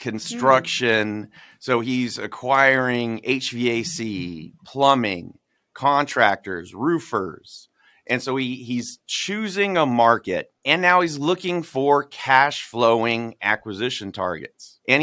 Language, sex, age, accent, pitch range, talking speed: English, male, 30-49, American, 110-150 Hz, 100 wpm